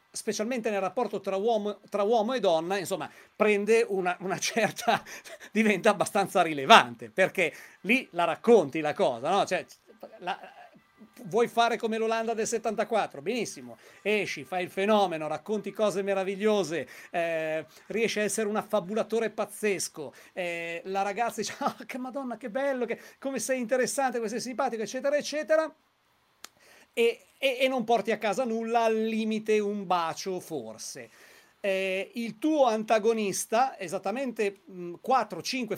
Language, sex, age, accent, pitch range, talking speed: Italian, male, 40-59, native, 195-235 Hz, 140 wpm